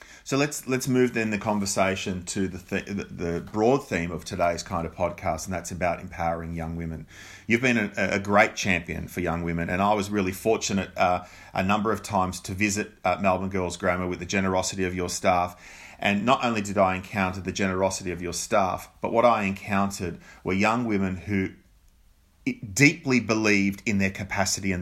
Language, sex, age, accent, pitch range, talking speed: English, male, 30-49, Australian, 90-105 Hz, 190 wpm